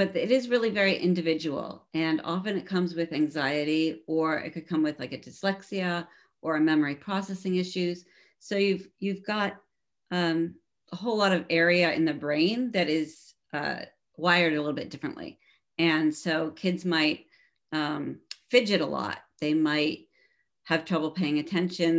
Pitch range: 155-185 Hz